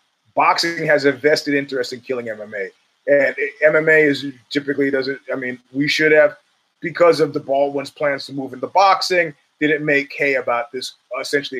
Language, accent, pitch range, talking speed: English, American, 145-185 Hz, 175 wpm